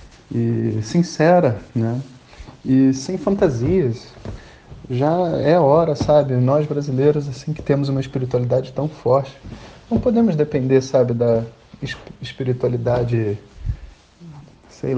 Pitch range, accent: 120-145 Hz, Brazilian